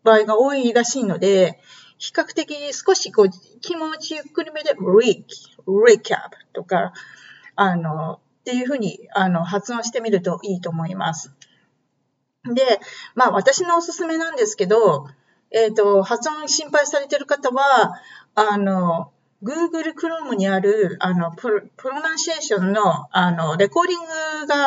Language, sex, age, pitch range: Japanese, female, 40-59, 195-310 Hz